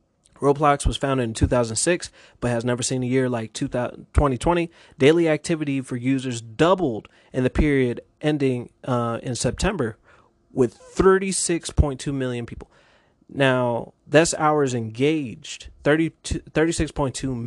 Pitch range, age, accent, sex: 120-150 Hz, 20-39, American, male